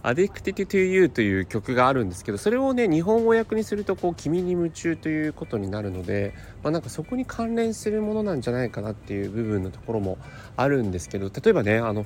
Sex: male